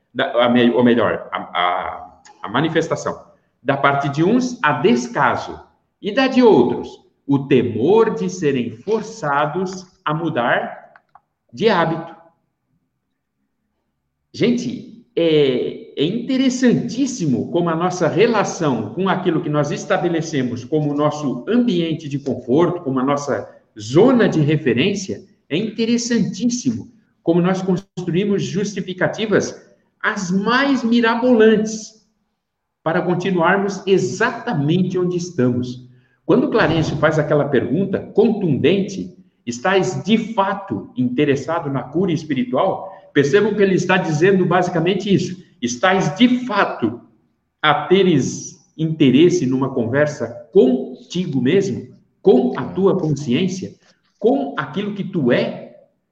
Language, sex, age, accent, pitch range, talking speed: Portuguese, male, 60-79, Brazilian, 150-205 Hz, 110 wpm